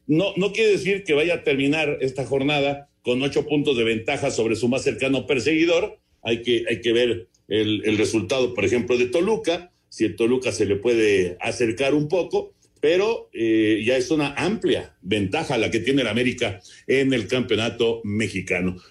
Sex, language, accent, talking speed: male, Spanish, Mexican, 180 wpm